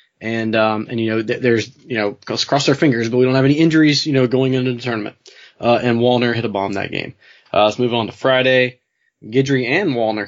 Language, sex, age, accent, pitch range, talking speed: English, male, 20-39, American, 115-140 Hz, 240 wpm